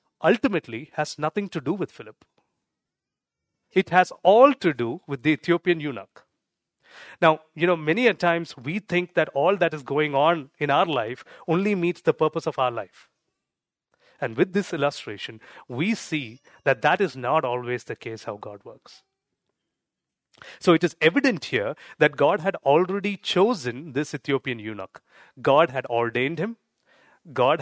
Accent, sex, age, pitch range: Indian, male, 30-49, 130-175 Hz